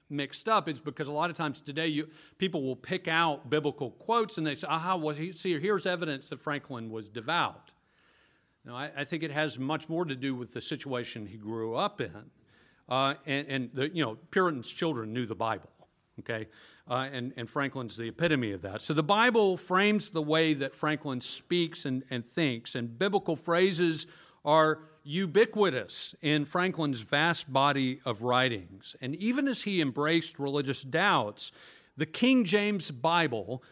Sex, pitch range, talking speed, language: male, 135-175 Hz, 180 wpm, English